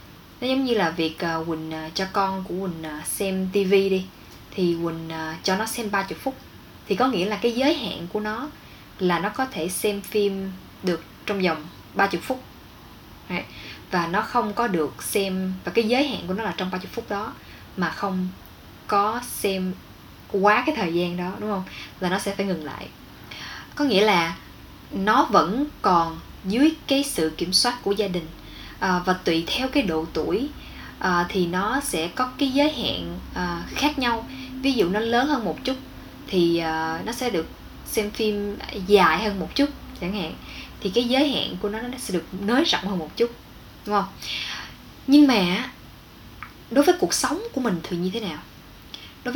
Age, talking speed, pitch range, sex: 10-29, 190 wpm, 175-240 Hz, female